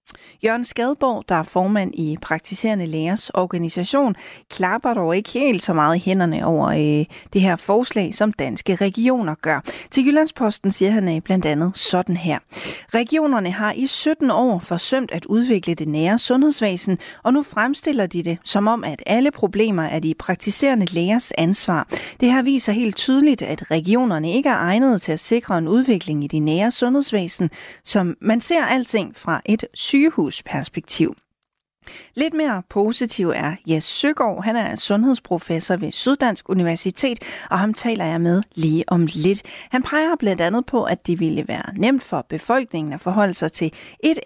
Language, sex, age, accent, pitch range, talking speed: Danish, female, 40-59, native, 170-240 Hz, 165 wpm